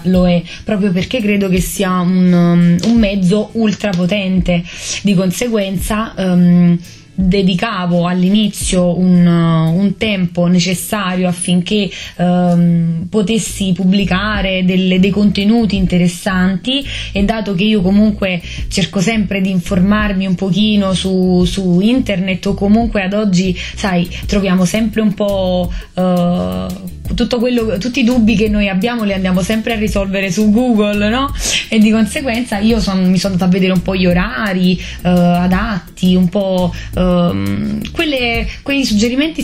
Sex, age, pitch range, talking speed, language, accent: female, 20-39, 180-215 Hz, 130 wpm, Italian, native